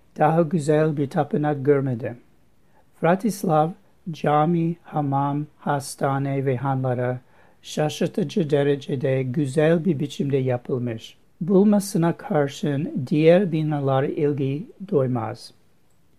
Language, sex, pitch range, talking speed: Turkish, male, 140-170 Hz, 85 wpm